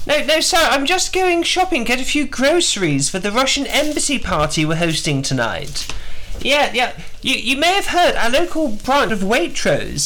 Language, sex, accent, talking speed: English, male, British, 185 wpm